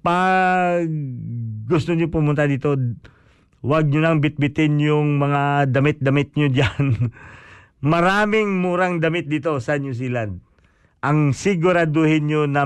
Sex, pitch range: male, 110-155 Hz